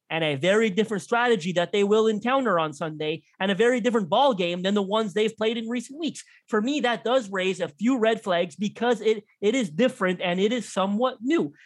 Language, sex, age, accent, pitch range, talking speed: English, male, 20-39, American, 195-270 Hz, 225 wpm